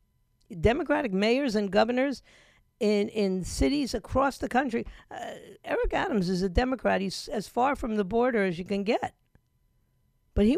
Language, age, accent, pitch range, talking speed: English, 50-69, American, 160-220 Hz, 160 wpm